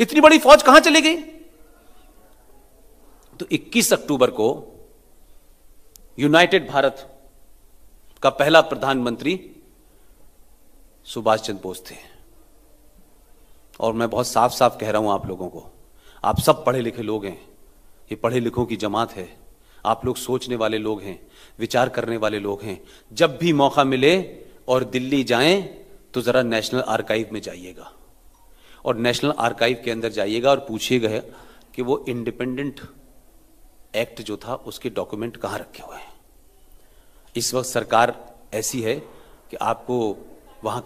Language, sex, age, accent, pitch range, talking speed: Marathi, male, 40-59, native, 110-170 Hz, 105 wpm